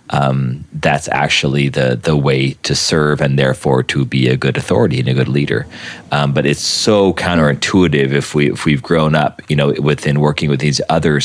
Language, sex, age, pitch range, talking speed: English, male, 30-49, 70-80 Hz, 195 wpm